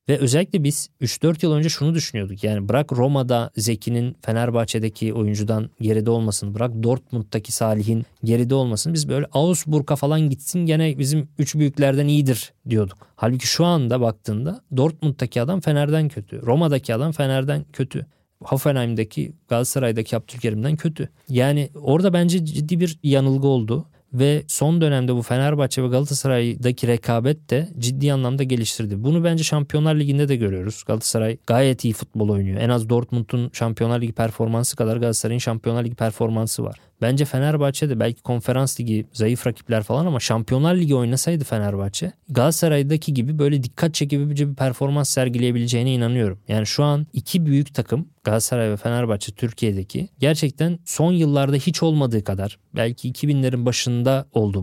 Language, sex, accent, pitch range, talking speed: Turkish, male, native, 115-145 Hz, 145 wpm